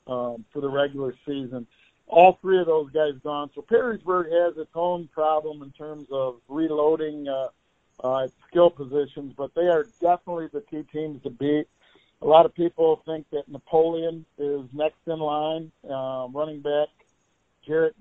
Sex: male